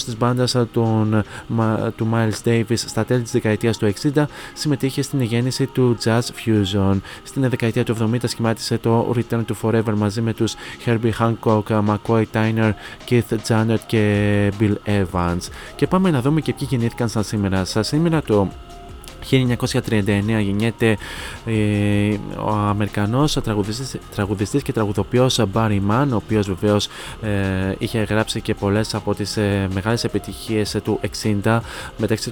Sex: male